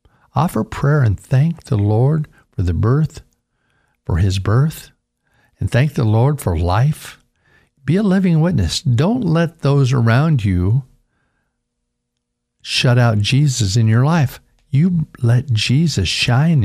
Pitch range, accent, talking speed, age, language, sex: 100-130 Hz, American, 135 wpm, 50-69, English, male